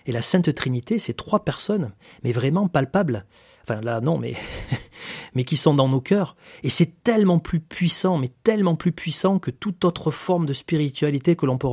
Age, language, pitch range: 30-49, French, 120-160 Hz